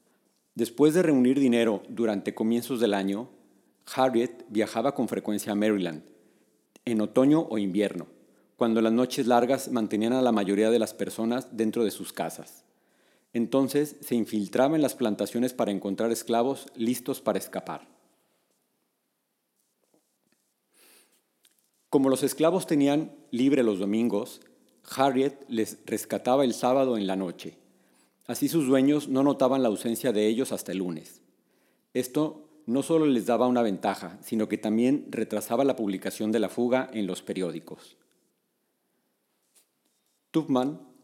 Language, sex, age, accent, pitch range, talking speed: Spanish, male, 40-59, Mexican, 105-135 Hz, 135 wpm